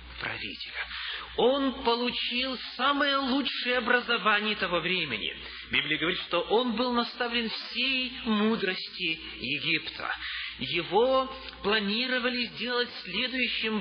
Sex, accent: male, native